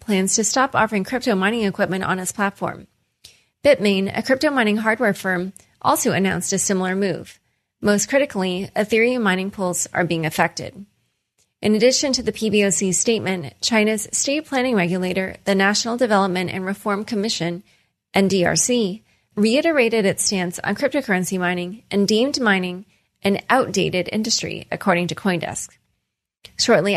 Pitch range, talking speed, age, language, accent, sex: 180-225 Hz, 140 wpm, 30-49, English, American, female